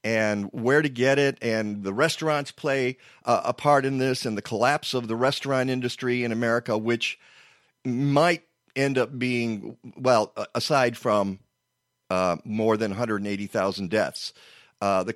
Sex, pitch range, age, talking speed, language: male, 105-135 Hz, 40-59, 150 wpm, English